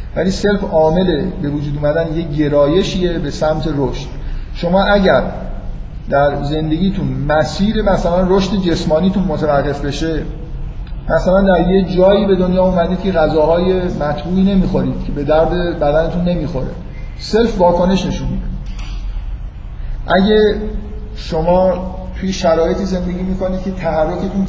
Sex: male